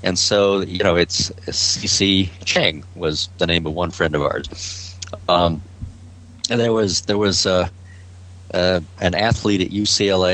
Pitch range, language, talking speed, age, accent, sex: 90-105 Hz, English, 165 wpm, 50-69, American, male